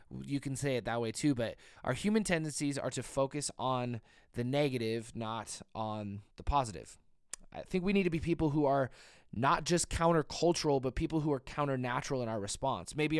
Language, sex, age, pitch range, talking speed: English, male, 20-39, 125-155 Hz, 190 wpm